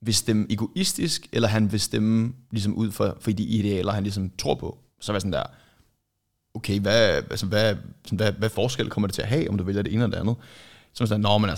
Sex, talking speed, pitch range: male, 210 wpm, 105-125 Hz